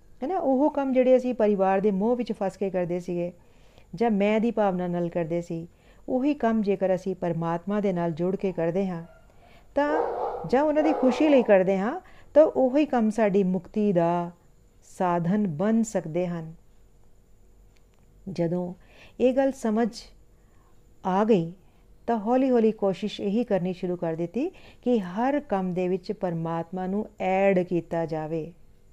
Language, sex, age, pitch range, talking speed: Punjabi, female, 50-69, 170-220 Hz, 115 wpm